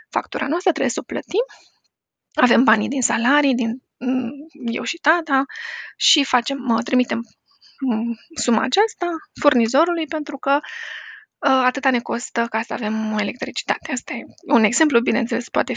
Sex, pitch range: female, 235-310 Hz